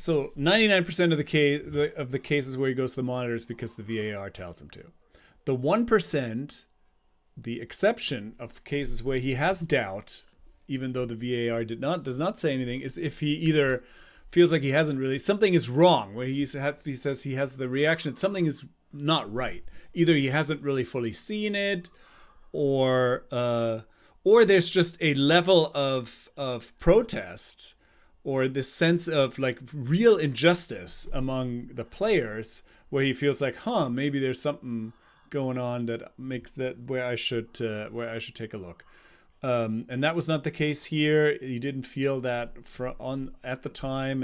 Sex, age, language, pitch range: male, 30-49, English, 120-155 Hz